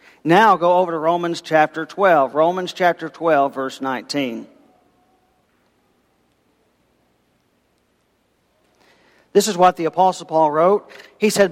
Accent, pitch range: American, 175-235 Hz